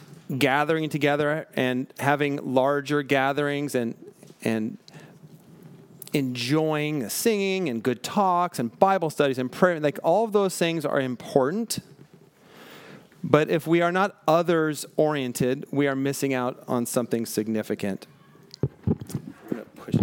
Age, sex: 40-59, male